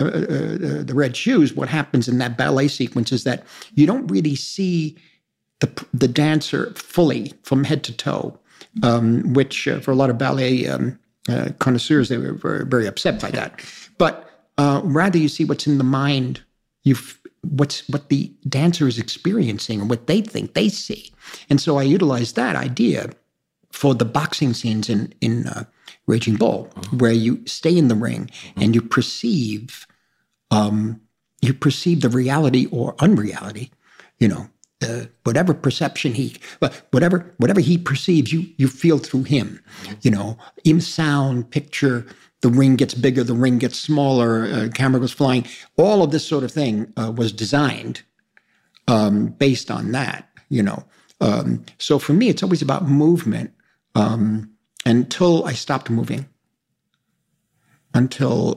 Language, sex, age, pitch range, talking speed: English, male, 50-69, 120-150 Hz, 160 wpm